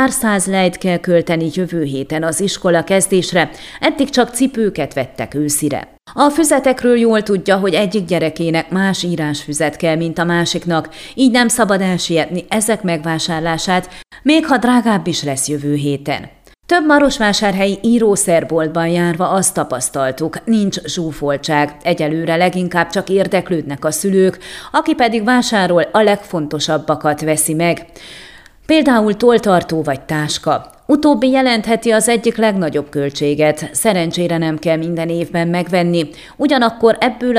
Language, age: Hungarian, 30-49